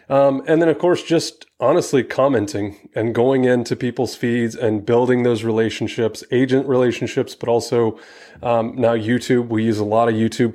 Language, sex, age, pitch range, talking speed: English, male, 20-39, 110-125 Hz, 170 wpm